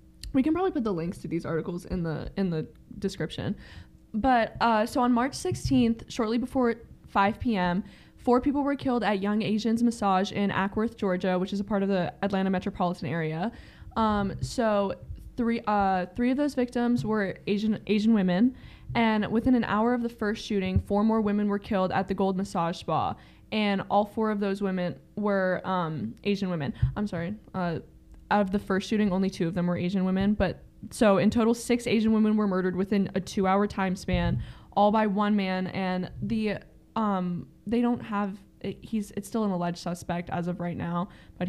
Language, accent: English, American